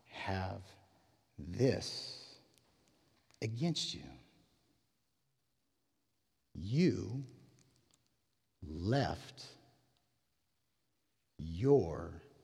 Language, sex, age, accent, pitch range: English, male, 50-69, American, 90-125 Hz